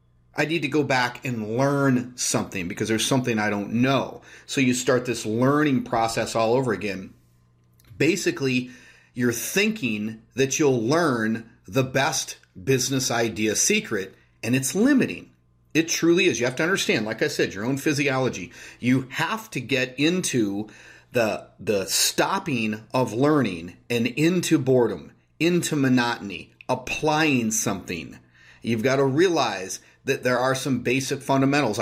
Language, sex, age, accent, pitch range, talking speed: English, male, 30-49, American, 115-155 Hz, 145 wpm